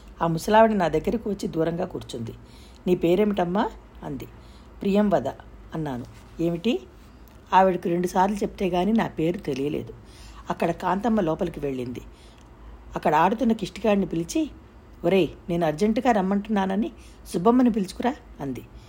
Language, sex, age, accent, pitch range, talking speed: Telugu, female, 50-69, native, 165-220 Hz, 115 wpm